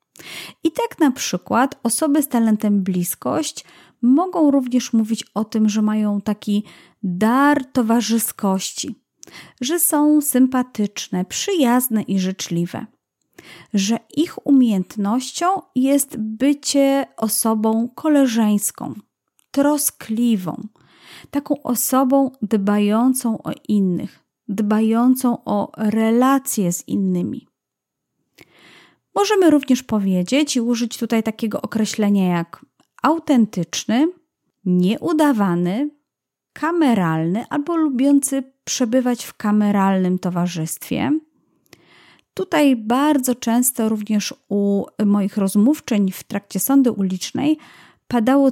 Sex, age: female, 30-49